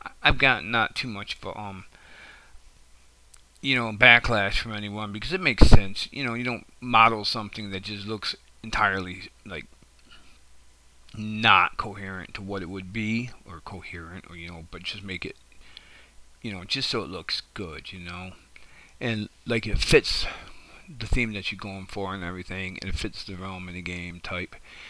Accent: American